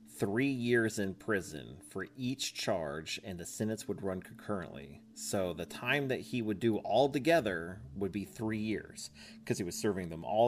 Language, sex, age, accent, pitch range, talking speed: English, male, 30-49, American, 90-120 Hz, 185 wpm